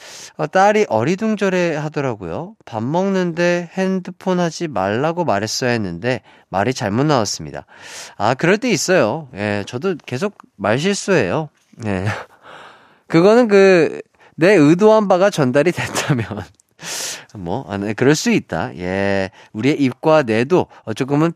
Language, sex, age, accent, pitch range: Korean, male, 30-49, native, 110-170 Hz